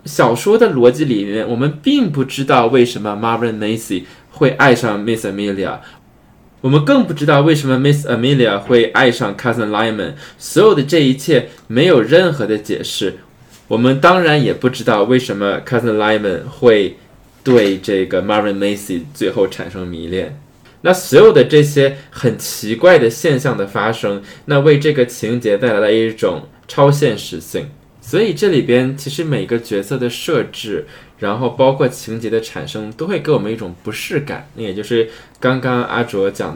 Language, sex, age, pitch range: Chinese, male, 20-39, 105-135 Hz